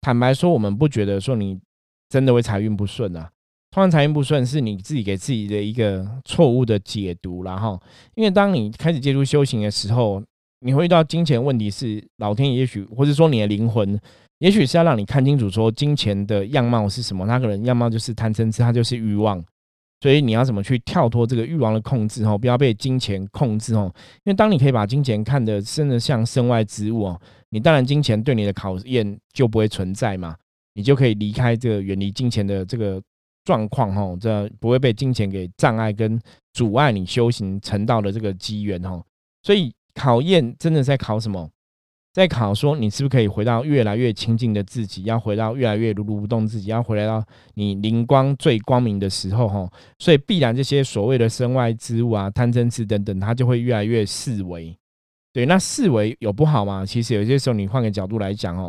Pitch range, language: 100-130 Hz, Chinese